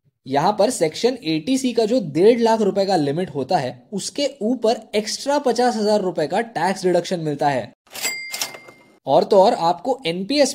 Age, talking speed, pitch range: 20-39, 165 wpm, 155-230 Hz